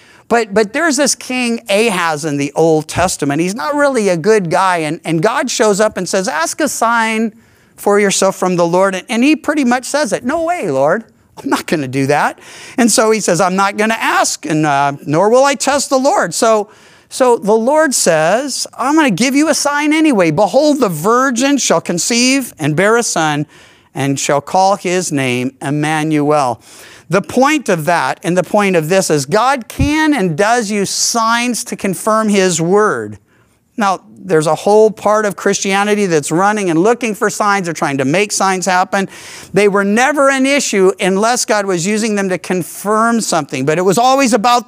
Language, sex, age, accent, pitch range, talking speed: English, male, 50-69, American, 175-240 Hz, 200 wpm